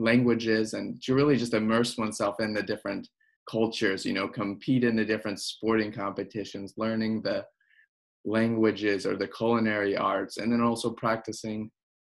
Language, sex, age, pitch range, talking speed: English, male, 20-39, 110-120 Hz, 150 wpm